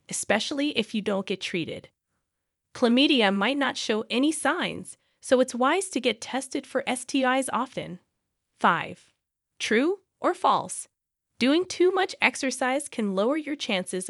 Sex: female